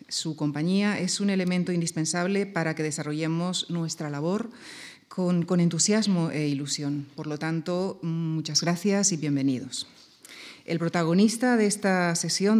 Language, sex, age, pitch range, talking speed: Spanish, female, 40-59, 160-195 Hz, 135 wpm